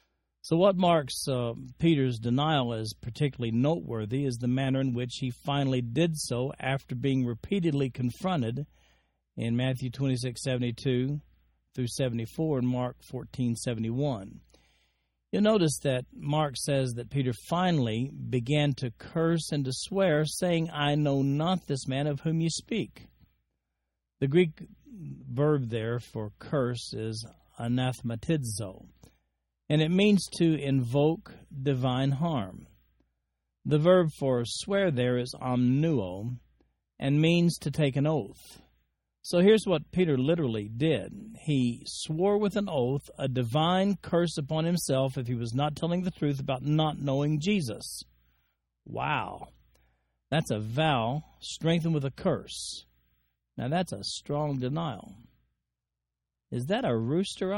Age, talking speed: 50-69, 135 wpm